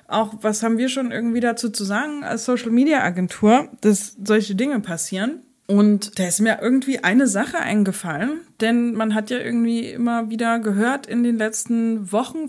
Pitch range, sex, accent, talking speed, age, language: 185-235 Hz, female, German, 180 wpm, 20-39, German